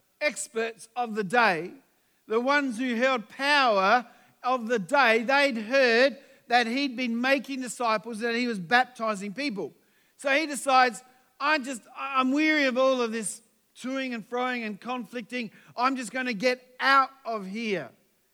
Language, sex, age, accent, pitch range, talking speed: English, male, 50-69, Australian, 220-270 Hz, 155 wpm